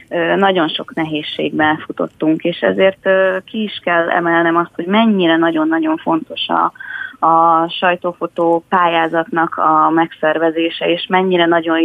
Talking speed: 120 wpm